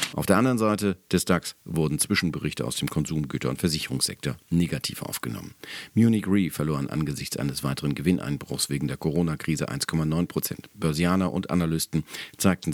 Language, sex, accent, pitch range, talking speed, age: German, male, German, 70-90 Hz, 145 wpm, 50-69